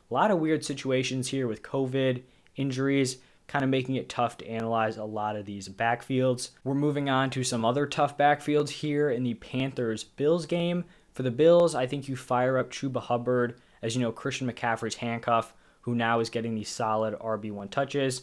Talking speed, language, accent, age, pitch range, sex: 190 wpm, English, American, 20-39, 115-140 Hz, male